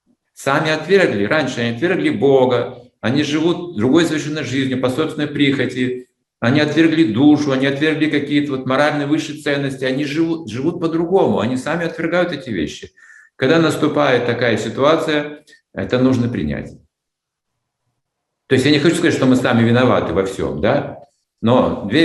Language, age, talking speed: Russian, 60-79, 145 wpm